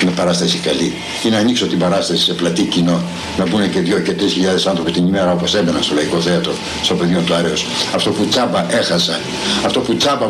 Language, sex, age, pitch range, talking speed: Greek, male, 60-79, 130-180 Hz, 215 wpm